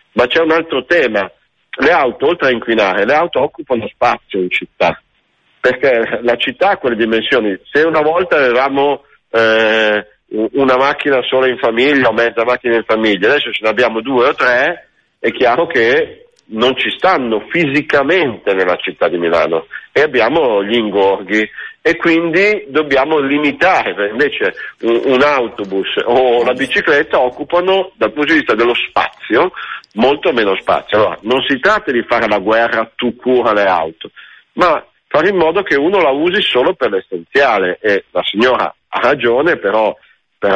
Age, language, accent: 50-69, Italian, native